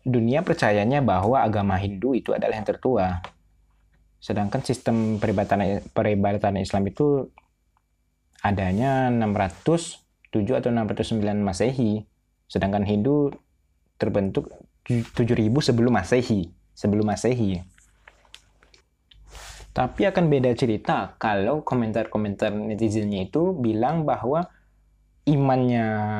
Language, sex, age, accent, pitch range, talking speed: Indonesian, male, 20-39, native, 100-135 Hz, 85 wpm